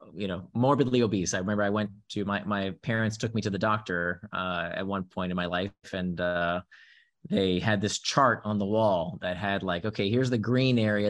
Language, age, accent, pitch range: Hebrew, 30-49, American, 95-115 Hz